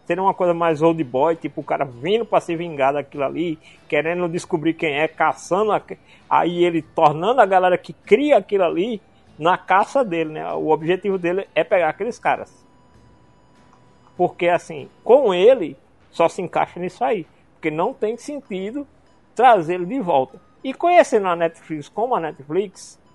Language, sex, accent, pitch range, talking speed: Portuguese, male, Brazilian, 155-200 Hz, 170 wpm